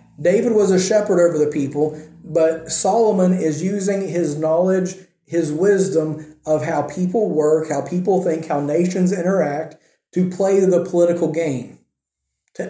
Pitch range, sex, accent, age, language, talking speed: 155-185 Hz, male, American, 40-59, English, 145 wpm